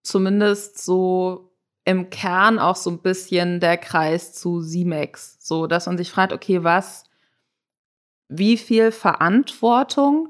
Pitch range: 170-210 Hz